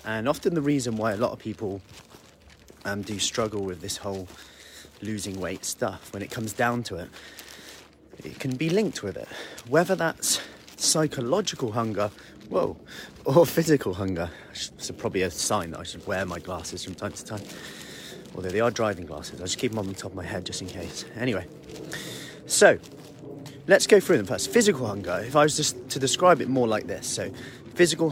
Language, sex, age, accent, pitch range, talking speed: English, male, 30-49, British, 105-140 Hz, 195 wpm